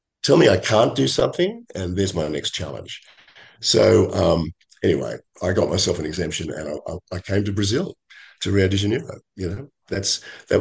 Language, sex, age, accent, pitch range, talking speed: English, male, 50-69, Australian, 90-105 Hz, 185 wpm